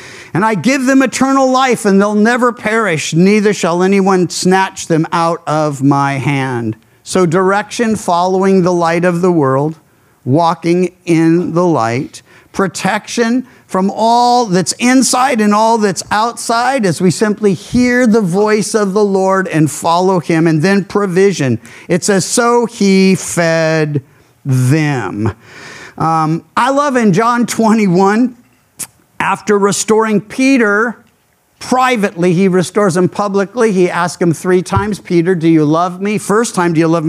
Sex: male